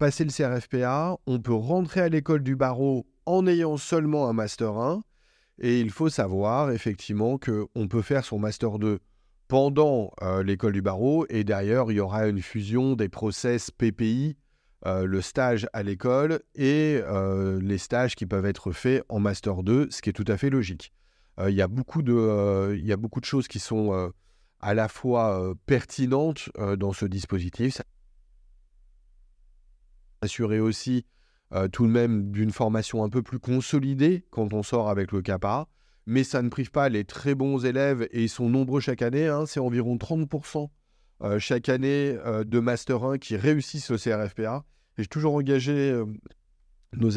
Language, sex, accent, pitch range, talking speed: French, male, French, 100-135 Hz, 180 wpm